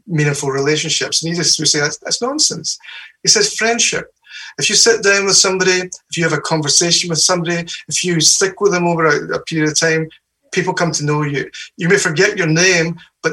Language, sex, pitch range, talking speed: English, male, 150-180 Hz, 215 wpm